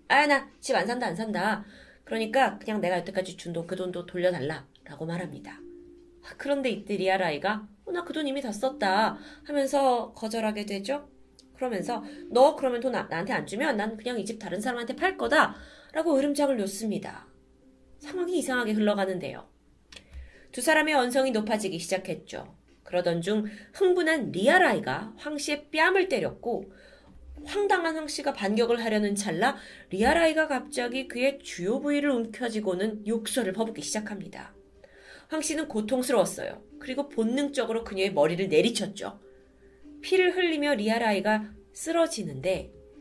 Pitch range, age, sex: 195-290 Hz, 20-39, female